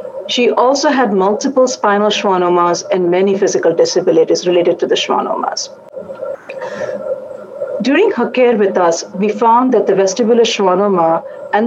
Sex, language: female, English